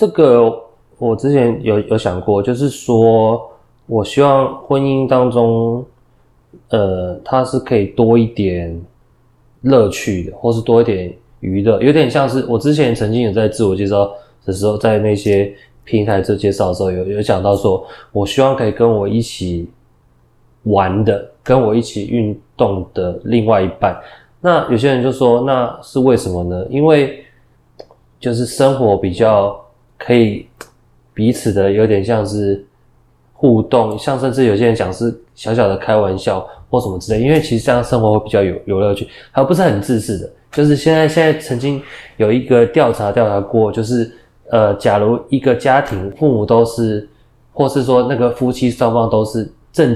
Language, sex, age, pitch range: Chinese, male, 20-39, 105-125 Hz